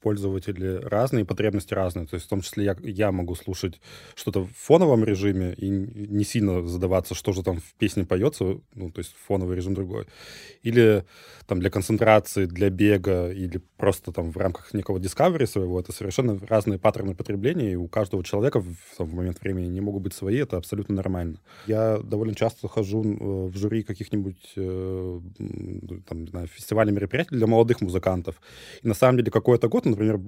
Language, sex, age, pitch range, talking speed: Russian, male, 20-39, 95-115 Hz, 180 wpm